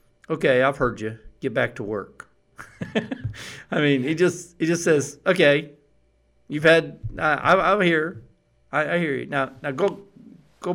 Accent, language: American, English